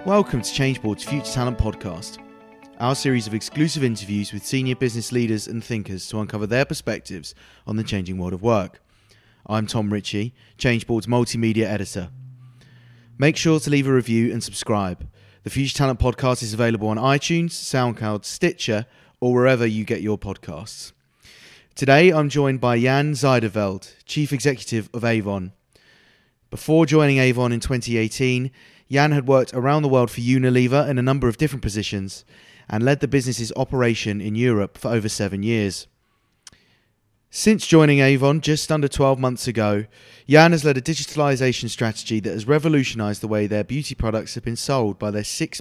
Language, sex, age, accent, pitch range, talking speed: English, male, 30-49, British, 110-135 Hz, 165 wpm